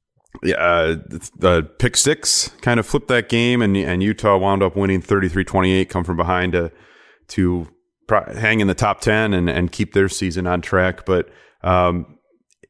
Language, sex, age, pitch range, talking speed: English, male, 30-49, 90-110 Hz, 170 wpm